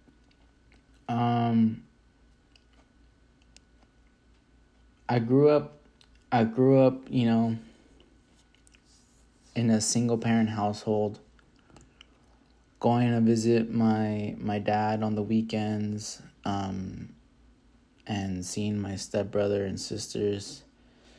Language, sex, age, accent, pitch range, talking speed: English, male, 20-39, American, 100-115 Hz, 85 wpm